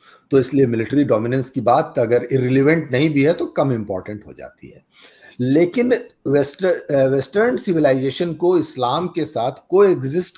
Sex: male